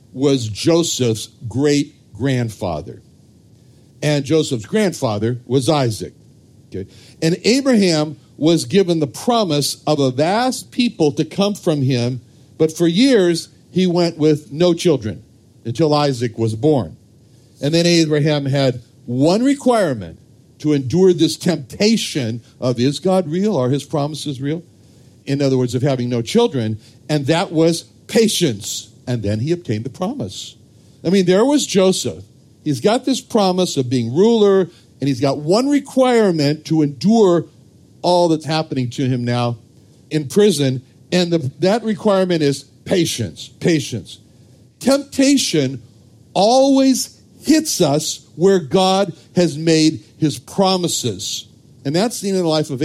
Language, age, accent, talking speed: English, 60-79, American, 135 wpm